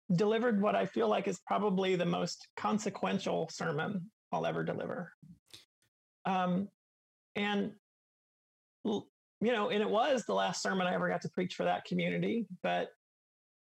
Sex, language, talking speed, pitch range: male, English, 145 wpm, 175-205 Hz